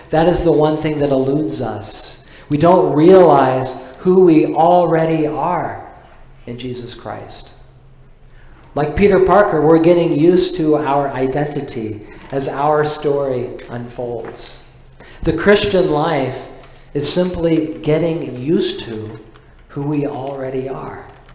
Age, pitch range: 50-69, 125-155 Hz